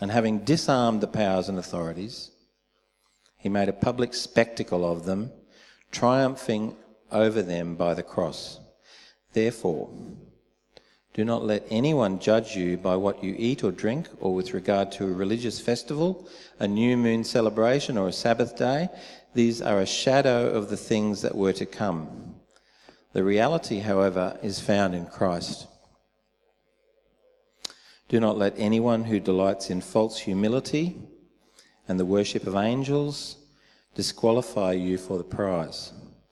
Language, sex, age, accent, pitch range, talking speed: English, male, 40-59, Australian, 95-120 Hz, 140 wpm